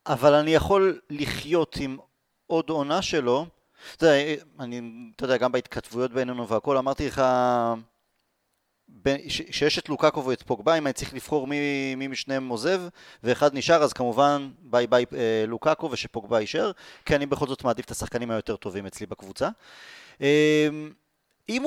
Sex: male